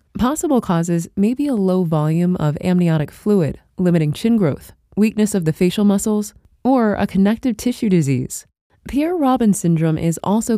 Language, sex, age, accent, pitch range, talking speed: English, female, 20-39, American, 165-225 Hz, 155 wpm